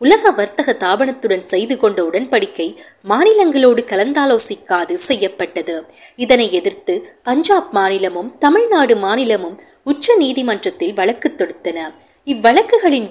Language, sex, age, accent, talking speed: Tamil, female, 20-39, native, 90 wpm